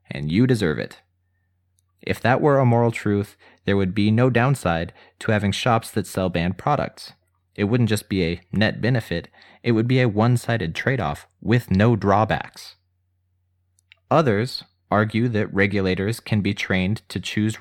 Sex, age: male, 30-49